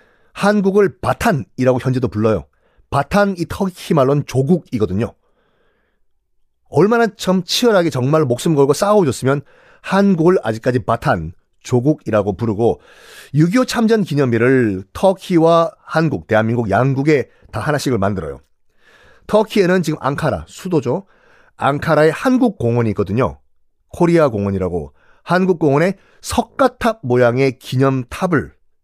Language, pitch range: Korean, 115-190 Hz